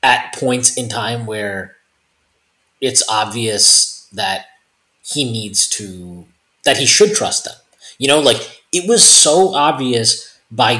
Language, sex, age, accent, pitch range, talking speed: English, male, 30-49, American, 115-155 Hz, 135 wpm